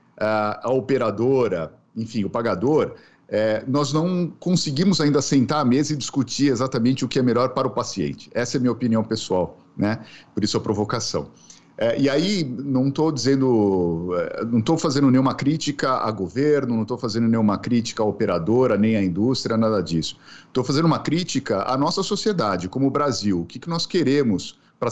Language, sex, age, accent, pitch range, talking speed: Portuguese, male, 50-69, Brazilian, 115-150 Hz, 180 wpm